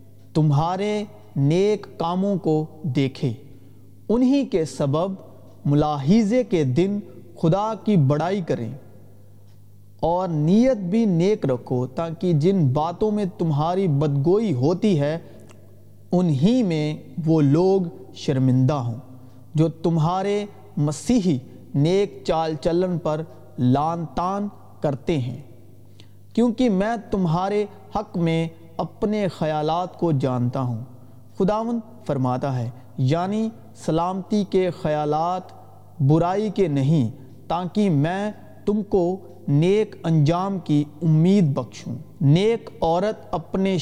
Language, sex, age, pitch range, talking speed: Urdu, male, 40-59, 135-195 Hz, 105 wpm